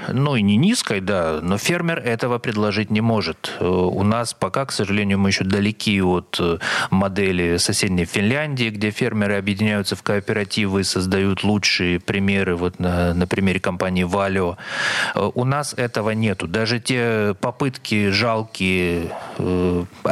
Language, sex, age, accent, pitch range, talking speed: Russian, male, 30-49, native, 100-120 Hz, 135 wpm